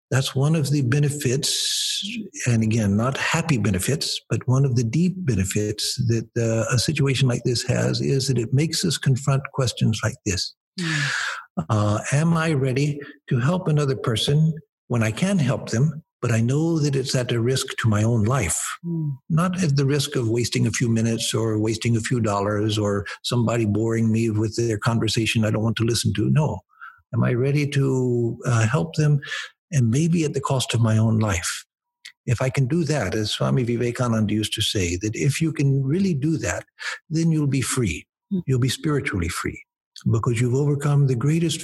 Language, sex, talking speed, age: English, male, 190 wpm, 60-79